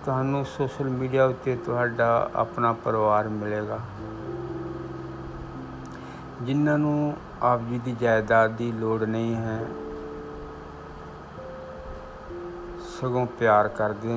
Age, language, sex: 60-79, Hindi, male